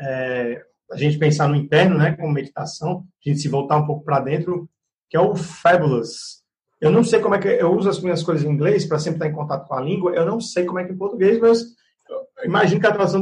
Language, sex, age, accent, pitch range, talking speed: Portuguese, male, 30-49, Brazilian, 150-190 Hz, 255 wpm